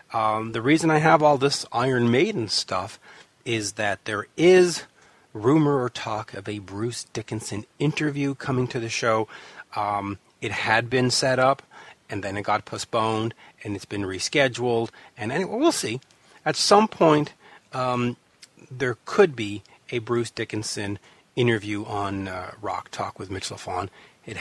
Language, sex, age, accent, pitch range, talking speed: English, male, 40-59, American, 110-145 Hz, 155 wpm